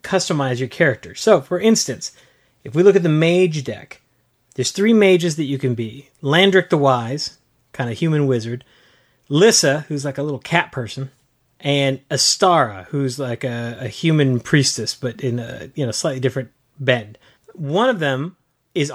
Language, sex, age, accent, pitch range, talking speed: English, male, 30-49, American, 125-155 Hz, 170 wpm